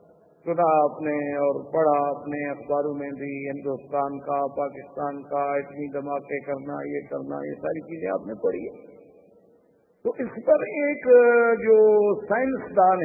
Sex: male